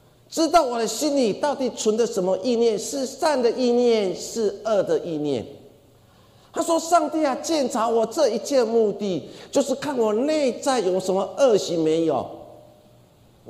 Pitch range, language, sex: 190-275 Hz, Chinese, male